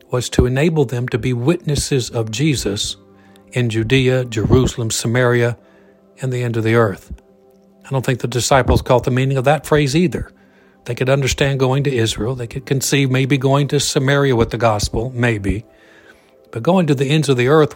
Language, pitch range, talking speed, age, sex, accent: English, 115-140 Hz, 190 wpm, 60-79, male, American